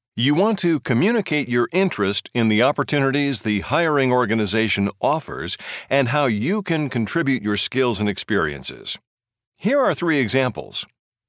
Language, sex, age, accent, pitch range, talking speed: English, male, 60-79, American, 115-165 Hz, 140 wpm